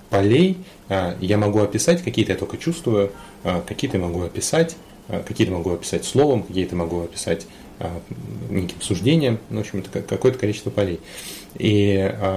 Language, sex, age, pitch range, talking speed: Russian, male, 30-49, 95-110 Hz, 130 wpm